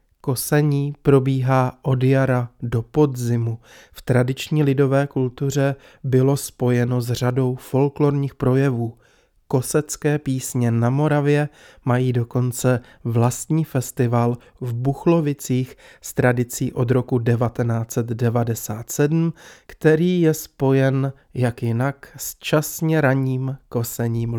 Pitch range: 120-140 Hz